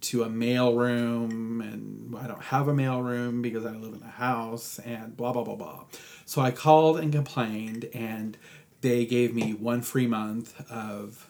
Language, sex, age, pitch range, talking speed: English, male, 30-49, 115-145 Hz, 180 wpm